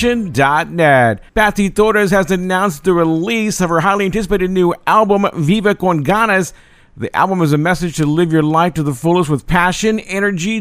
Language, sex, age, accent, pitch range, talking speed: English, male, 50-69, American, 165-200 Hz, 170 wpm